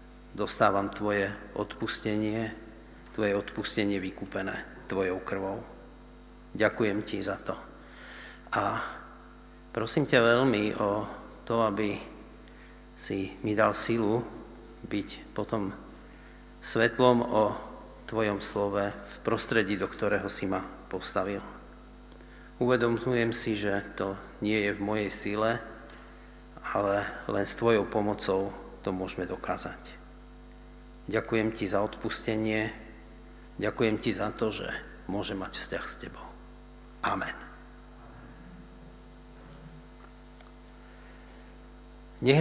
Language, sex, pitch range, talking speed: Slovak, male, 100-120 Hz, 100 wpm